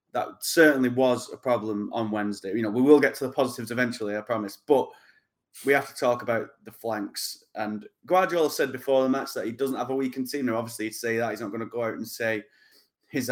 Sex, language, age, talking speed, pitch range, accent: male, English, 20-39, 240 wpm, 115-130 Hz, British